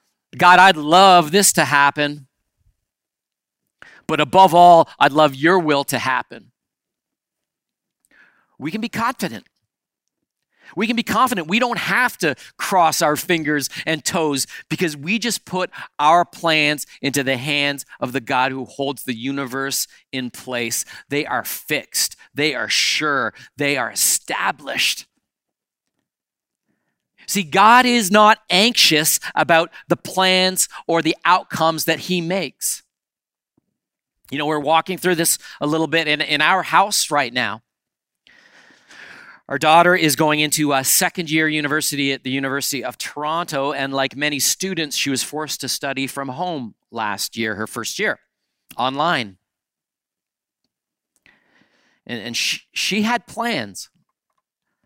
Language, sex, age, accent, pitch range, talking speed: English, male, 40-59, American, 140-180 Hz, 135 wpm